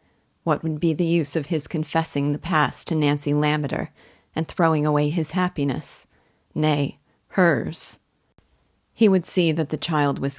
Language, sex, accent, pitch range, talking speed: English, female, American, 140-160 Hz, 155 wpm